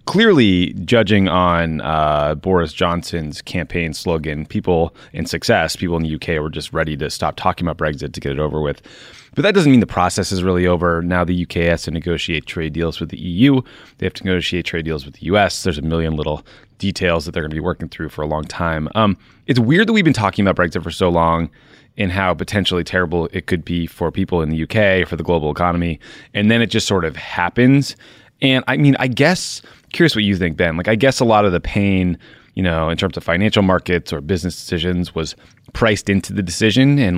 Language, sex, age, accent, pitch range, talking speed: English, male, 30-49, American, 85-105 Hz, 230 wpm